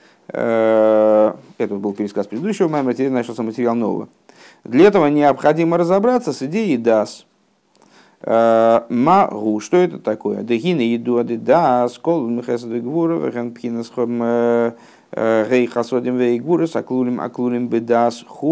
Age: 50-69